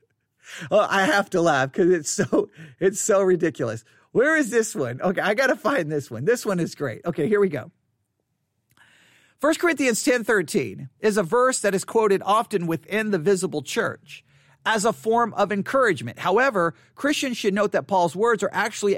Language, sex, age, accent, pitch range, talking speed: English, male, 50-69, American, 145-240 Hz, 185 wpm